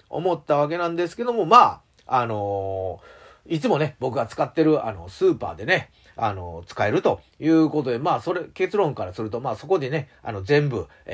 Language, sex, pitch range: Japanese, male, 110-170 Hz